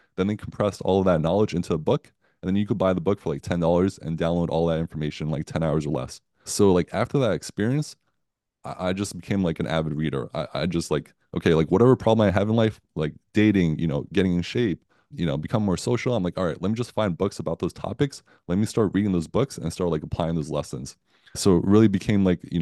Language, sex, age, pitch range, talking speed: English, male, 20-39, 85-100 Hz, 260 wpm